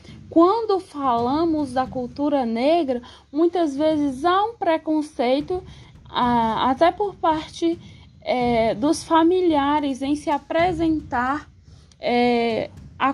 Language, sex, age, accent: Portuguese, female, 20-39, Brazilian